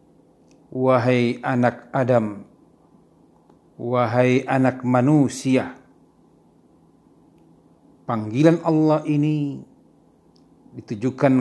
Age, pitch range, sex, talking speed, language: 40-59, 115-135 Hz, male, 55 wpm, Indonesian